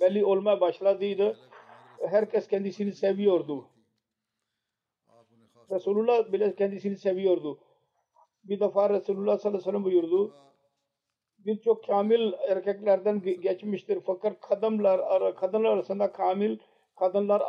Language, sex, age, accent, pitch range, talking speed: Turkish, male, 50-69, Indian, 185-205 Hz, 95 wpm